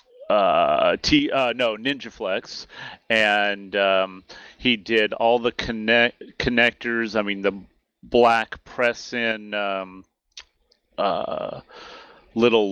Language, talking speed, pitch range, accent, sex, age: English, 110 wpm, 100-115 Hz, American, male, 30-49